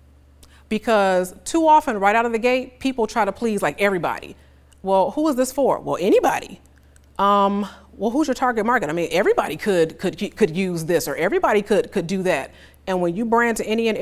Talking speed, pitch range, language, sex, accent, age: 205 wpm, 185-235 Hz, English, female, American, 30-49